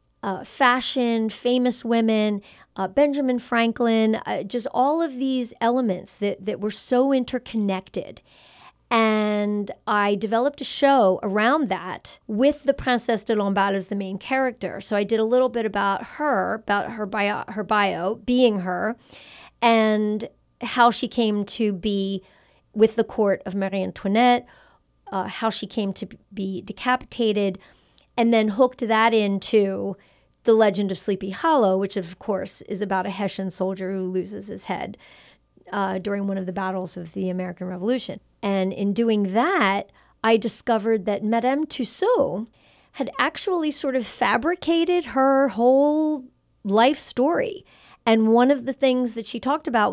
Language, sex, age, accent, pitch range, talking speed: English, female, 40-59, American, 195-245 Hz, 150 wpm